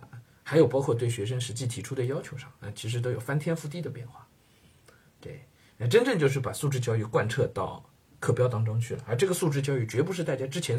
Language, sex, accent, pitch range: Chinese, male, native, 115-140 Hz